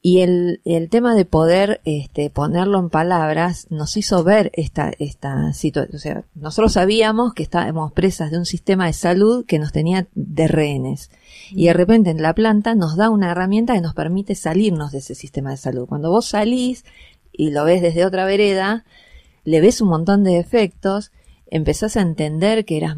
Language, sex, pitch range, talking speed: Spanish, female, 155-195 Hz, 190 wpm